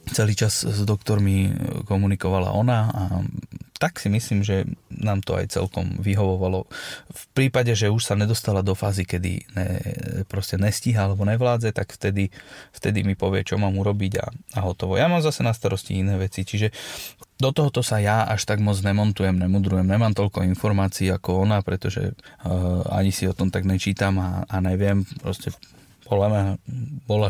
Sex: male